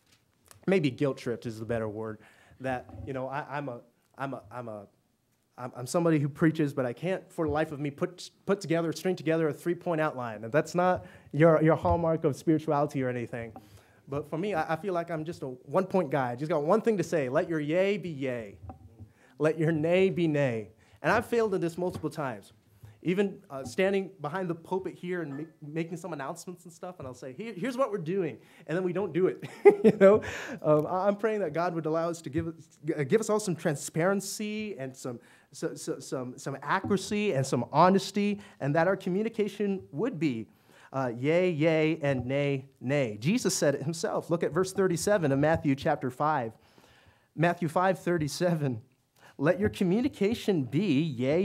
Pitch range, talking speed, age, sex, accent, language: 135-185 Hz, 195 wpm, 20-39, male, American, English